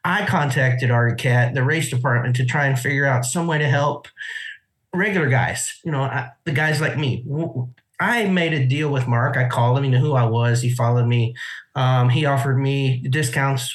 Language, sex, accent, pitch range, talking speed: English, male, American, 125-150 Hz, 195 wpm